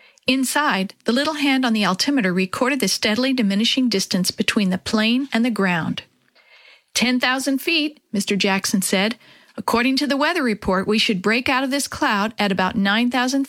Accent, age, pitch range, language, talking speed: American, 50-69, 200-260 Hz, English, 170 wpm